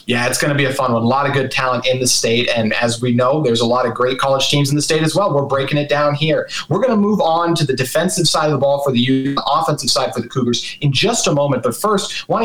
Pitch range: 130-150 Hz